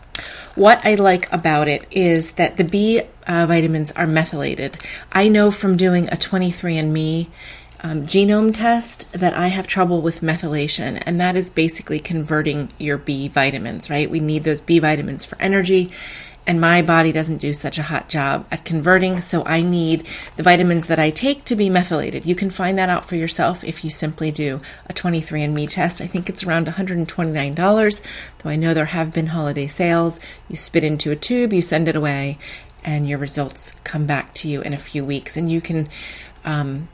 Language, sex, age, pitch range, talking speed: English, female, 30-49, 150-180 Hz, 190 wpm